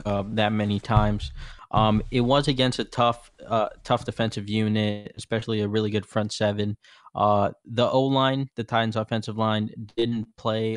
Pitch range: 105-120 Hz